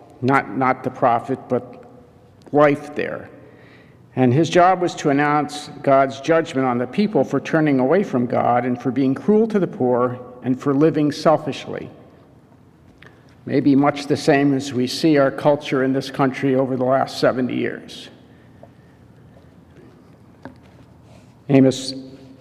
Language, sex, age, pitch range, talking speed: English, male, 50-69, 130-165 Hz, 140 wpm